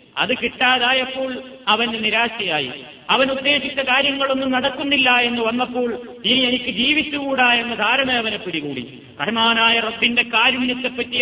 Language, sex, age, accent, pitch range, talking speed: Malayalam, male, 30-49, native, 180-245 Hz, 100 wpm